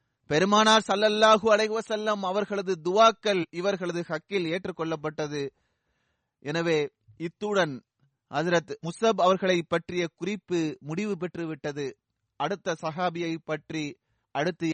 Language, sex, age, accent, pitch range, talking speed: Tamil, male, 30-49, native, 155-205 Hz, 80 wpm